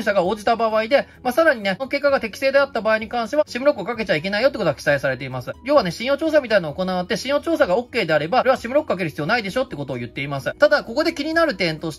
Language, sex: Japanese, male